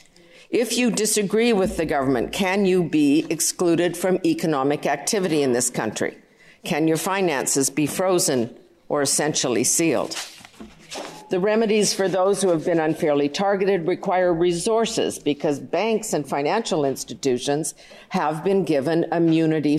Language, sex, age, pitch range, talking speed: English, female, 50-69, 145-180 Hz, 135 wpm